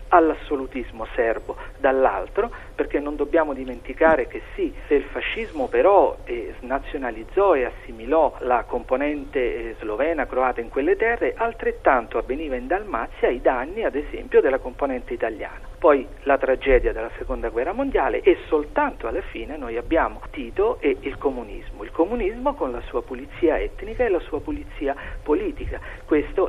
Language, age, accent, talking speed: Italian, 50-69, native, 150 wpm